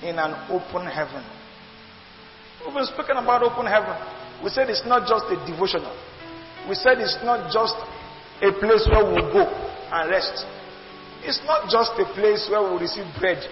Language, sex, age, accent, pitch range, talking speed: English, male, 50-69, Nigerian, 195-265 Hz, 170 wpm